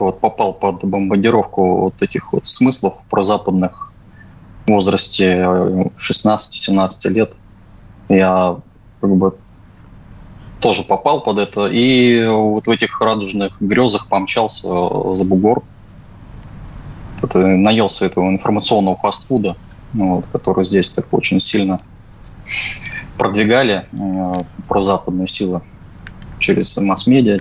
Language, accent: Russian, native